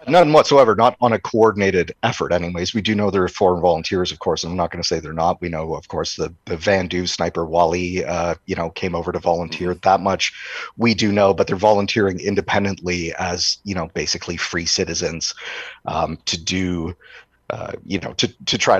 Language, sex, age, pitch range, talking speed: English, male, 30-49, 85-95 Hz, 210 wpm